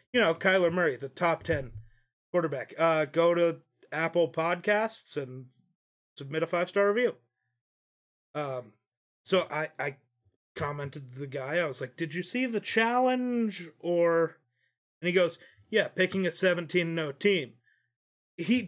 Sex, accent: male, American